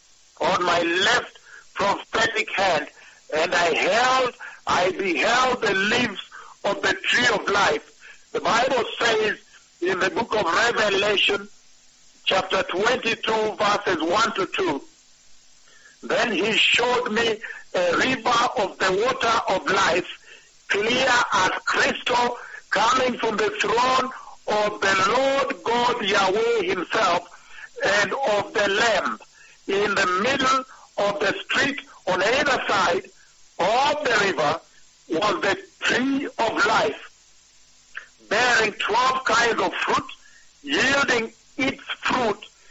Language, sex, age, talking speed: English, male, 60-79, 120 wpm